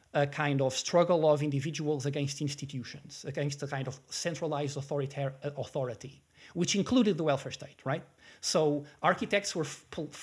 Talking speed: 140 wpm